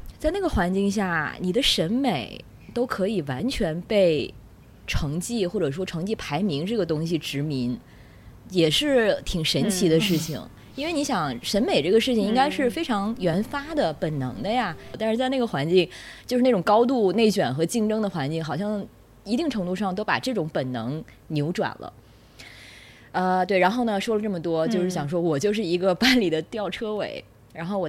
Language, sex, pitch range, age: Chinese, female, 140-205 Hz, 20-39